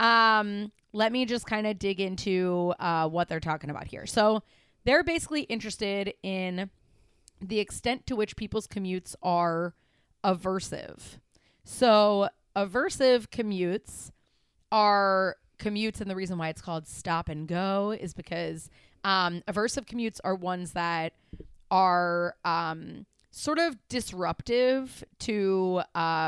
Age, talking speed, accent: 30-49, 130 wpm, American